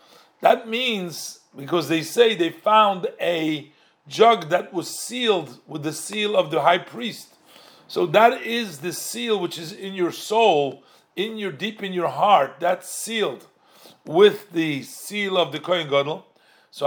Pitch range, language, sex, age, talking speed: 180-225 Hz, English, male, 50-69, 160 wpm